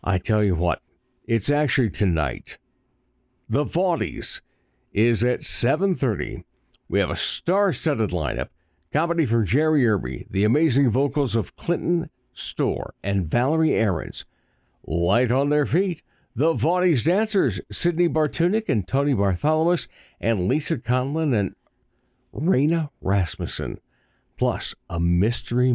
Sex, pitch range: male, 105-170 Hz